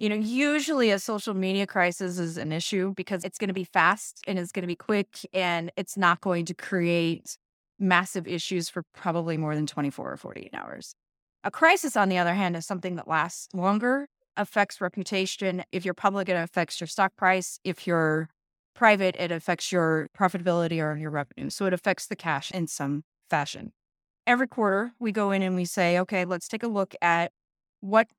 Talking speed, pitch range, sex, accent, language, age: 195 wpm, 175-210 Hz, female, American, English, 30-49